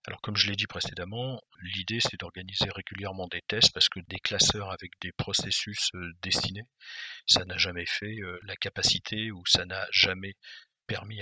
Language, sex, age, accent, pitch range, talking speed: French, male, 50-69, French, 95-110 Hz, 165 wpm